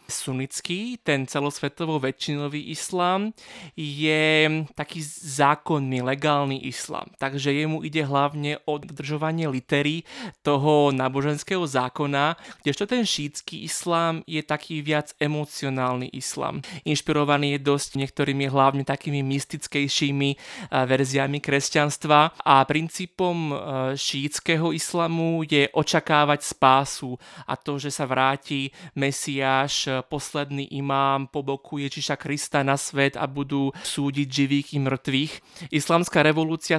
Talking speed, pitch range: 110 wpm, 135-155 Hz